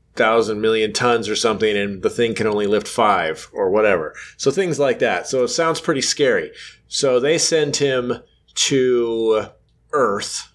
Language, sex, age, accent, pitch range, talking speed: English, male, 30-49, American, 110-145 Hz, 165 wpm